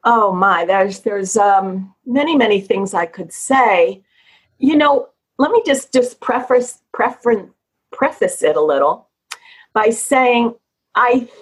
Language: English